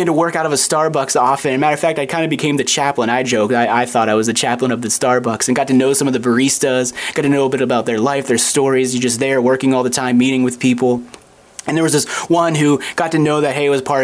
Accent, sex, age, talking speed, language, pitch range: American, male, 30-49, 300 wpm, English, 125-160 Hz